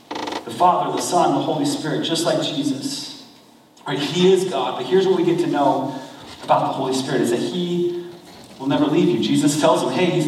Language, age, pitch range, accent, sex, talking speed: English, 30-49, 165-200 Hz, American, male, 215 wpm